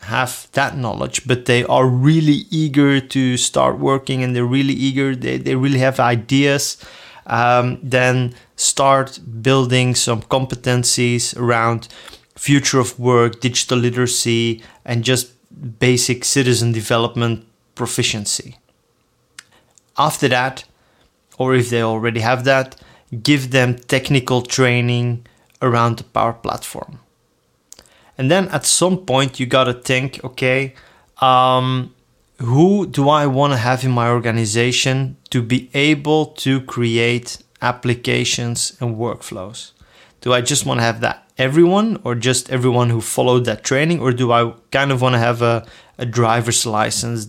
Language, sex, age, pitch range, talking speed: English, male, 30-49, 120-130 Hz, 135 wpm